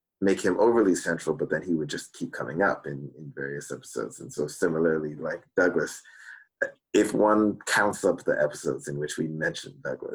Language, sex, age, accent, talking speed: English, male, 30-49, American, 190 wpm